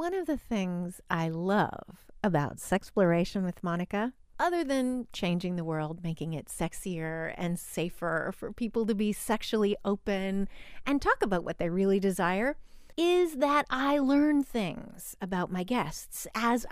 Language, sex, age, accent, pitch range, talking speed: English, female, 30-49, American, 185-265 Hz, 155 wpm